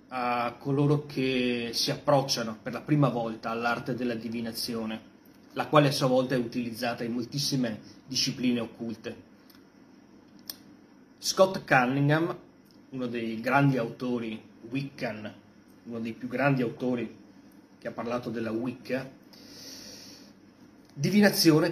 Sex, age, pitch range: male, 30-49, 120-150 Hz